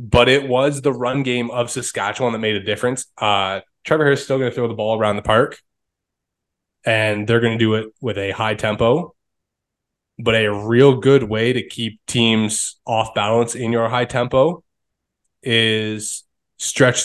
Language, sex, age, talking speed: English, male, 20-39, 175 wpm